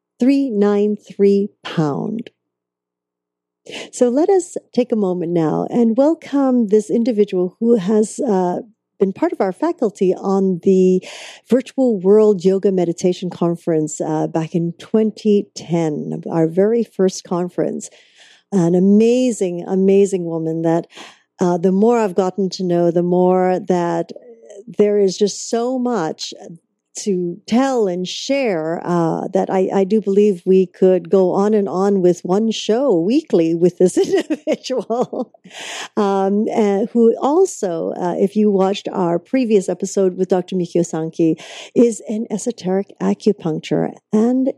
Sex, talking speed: female, 135 wpm